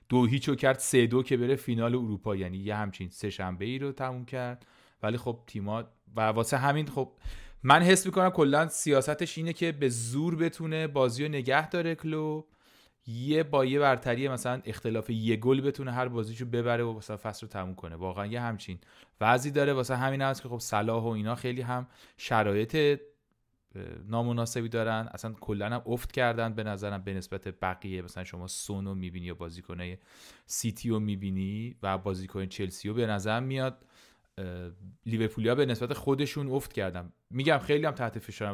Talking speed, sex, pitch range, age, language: 180 wpm, male, 105-135 Hz, 30-49, Persian